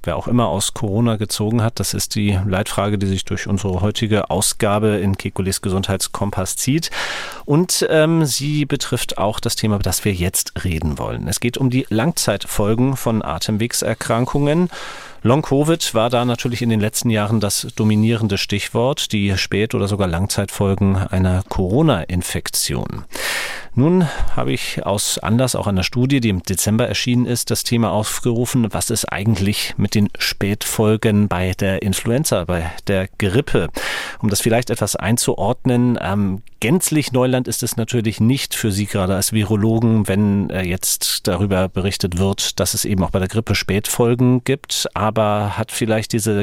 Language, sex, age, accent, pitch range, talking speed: German, male, 40-59, German, 100-120 Hz, 160 wpm